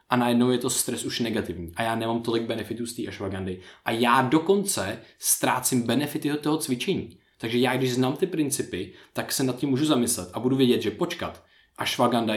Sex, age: male, 20-39